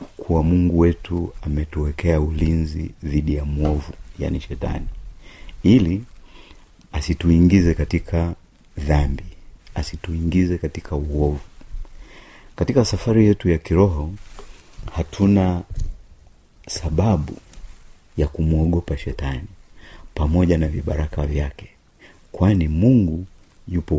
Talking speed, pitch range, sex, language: 85 wpm, 75-90 Hz, male, Swahili